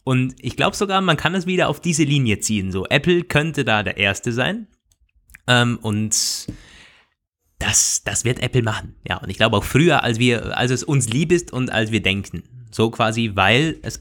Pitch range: 105-145 Hz